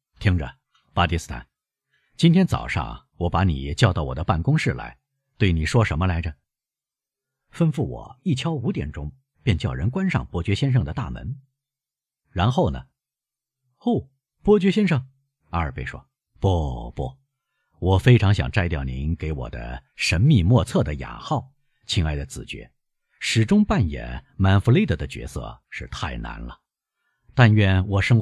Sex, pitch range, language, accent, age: male, 85-135 Hz, Chinese, native, 50-69